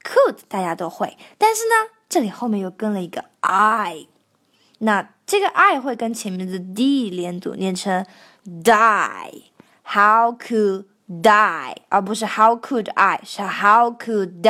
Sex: female